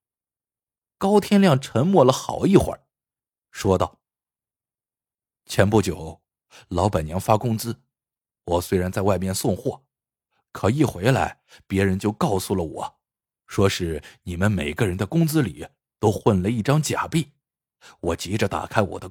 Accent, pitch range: native, 95-160 Hz